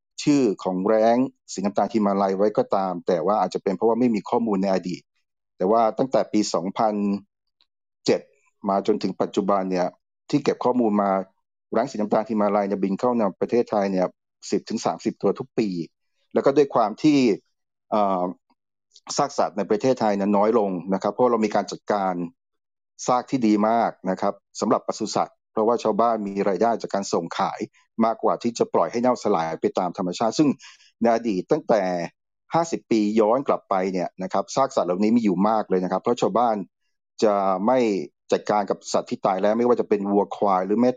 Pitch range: 95-115 Hz